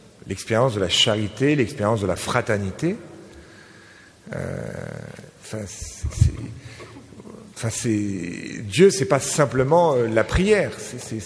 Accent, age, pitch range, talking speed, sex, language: French, 50-69, 110-165 Hz, 115 wpm, male, French